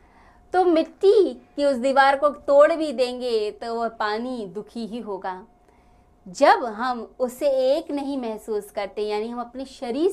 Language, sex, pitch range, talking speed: Hindi, female, 210-290 Hz, 155 wpm